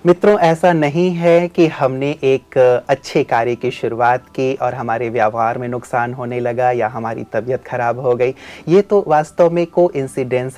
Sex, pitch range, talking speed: male, 125-160 Hz, 175 wpm